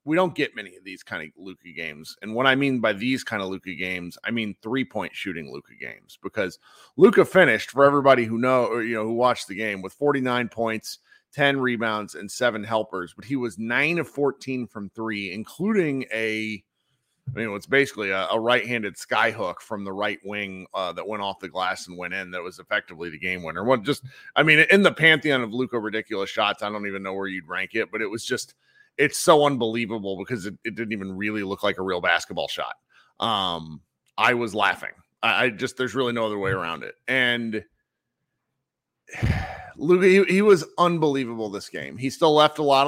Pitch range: 105-140 Hz